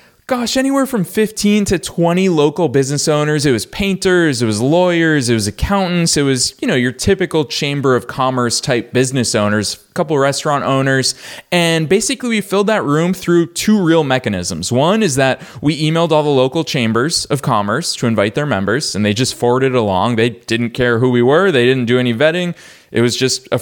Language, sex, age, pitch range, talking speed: English, male, 20-39, 115-155 Hz, 200 wpm